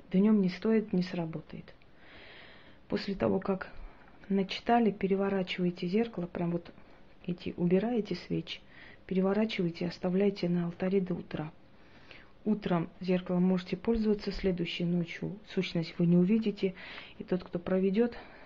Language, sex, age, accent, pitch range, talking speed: Russian, female, 30-49, native, 175-195 Hz, 120 wpm